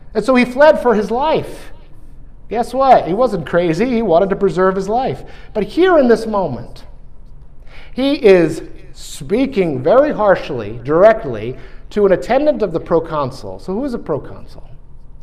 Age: 50-69